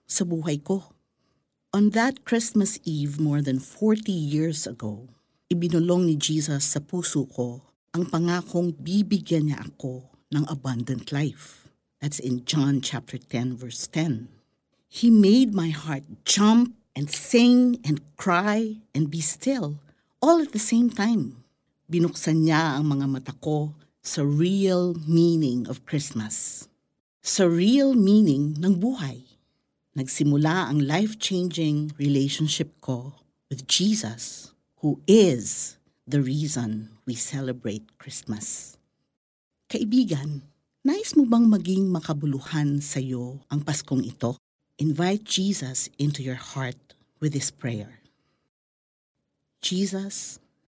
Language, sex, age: Filipino, female, 50-69